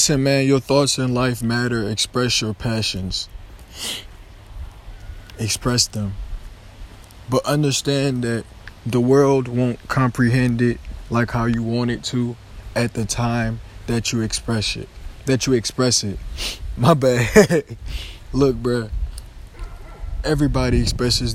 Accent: American